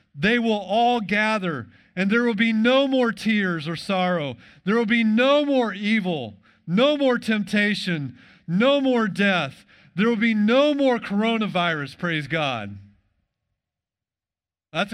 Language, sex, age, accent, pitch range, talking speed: English, male, 50-69, American, 155-235 Hz, 135 wpm